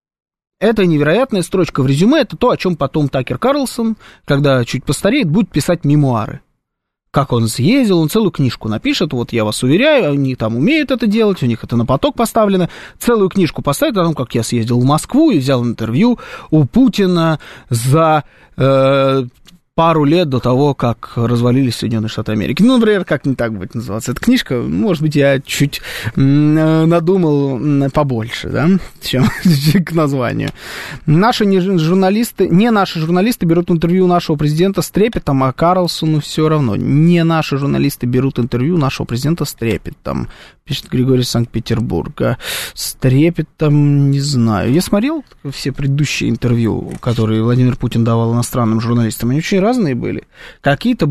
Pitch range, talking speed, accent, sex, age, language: 125-175 Hz, 155 wpm, native, male, 20-39, Russian